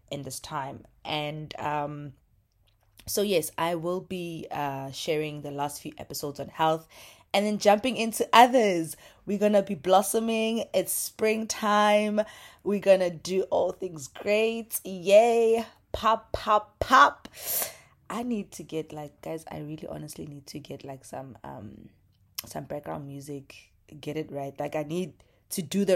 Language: English